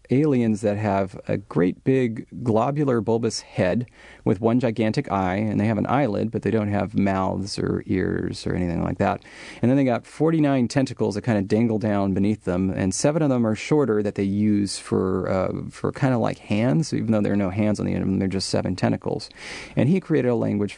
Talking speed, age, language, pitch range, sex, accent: 230 wpm, 30-49, English, 105-125 Hz, male, American